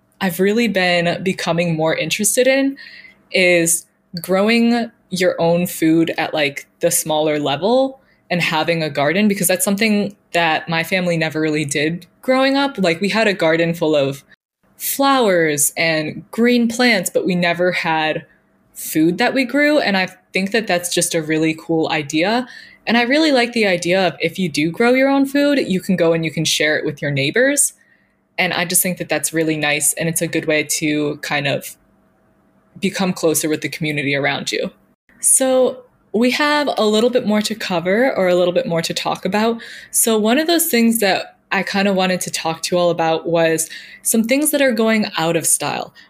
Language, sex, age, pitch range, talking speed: English, female, 20-39, 165-235 Hz, 195 wpm